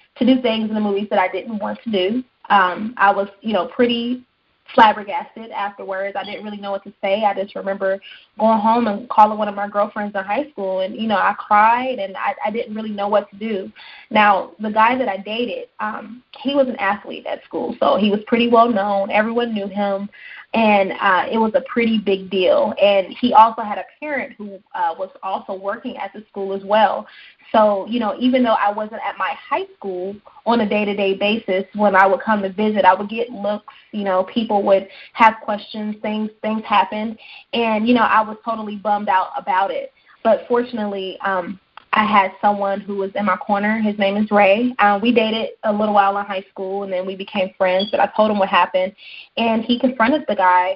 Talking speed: 220 wpm